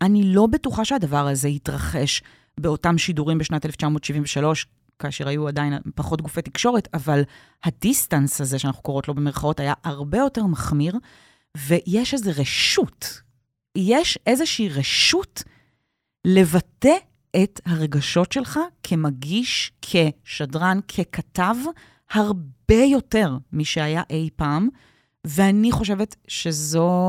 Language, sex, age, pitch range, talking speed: Hebrew, female, 30-49, 150-215 Hz, 105 wpm